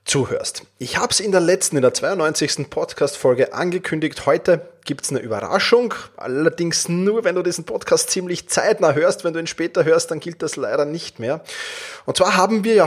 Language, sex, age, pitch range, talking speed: German, male, 20-39, 135-185 Hz, 195 wpm